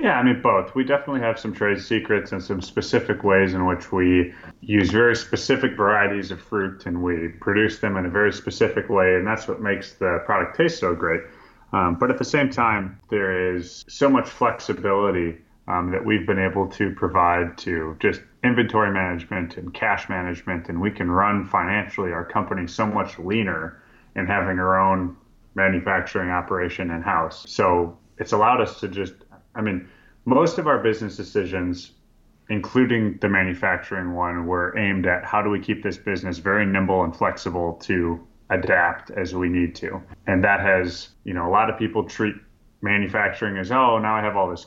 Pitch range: 90-105 Hz